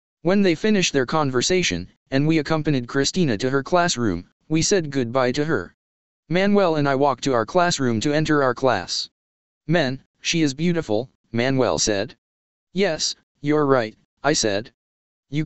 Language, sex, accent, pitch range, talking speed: English, male, American, 110-160 Hz, 155 wpm